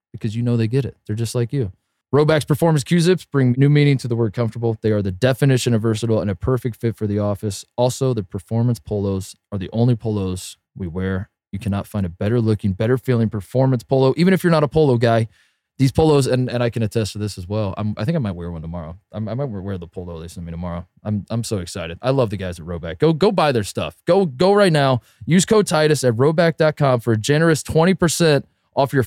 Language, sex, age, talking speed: English, male, 20-39, 240 wpm